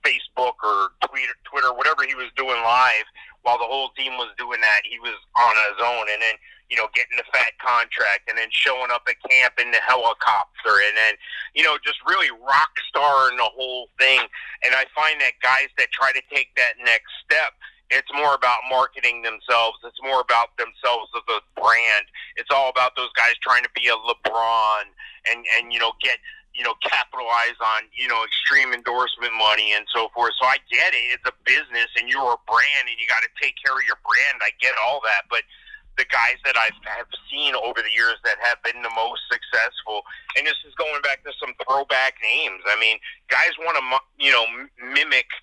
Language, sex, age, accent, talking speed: English, male, 40-59, American, 210 wpm